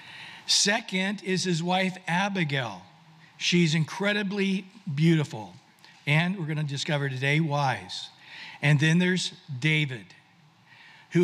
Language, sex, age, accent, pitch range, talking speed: English, male, 60-79, American, 155-195 Hz, 105 wpm